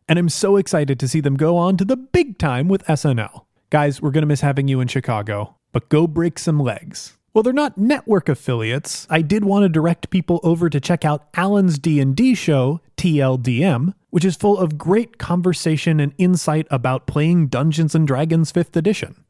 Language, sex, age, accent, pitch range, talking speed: English, male, 30-49, American, 140-195 Hz, 195 wpm